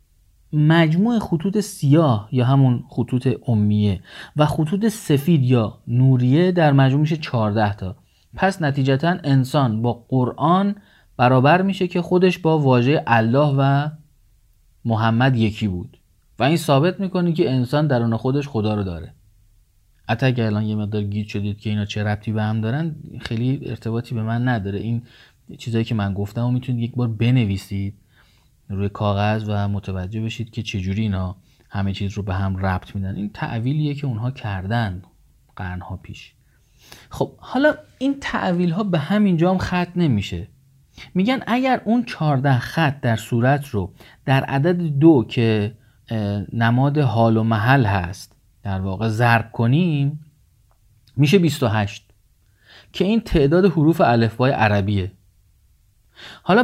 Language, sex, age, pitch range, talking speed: Persian, male, 30-49, 105-150 Hz, 145 wpm